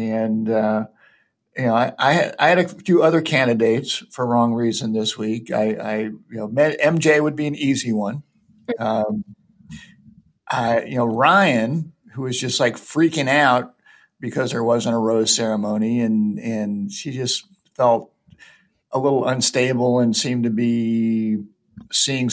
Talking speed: 150 wpm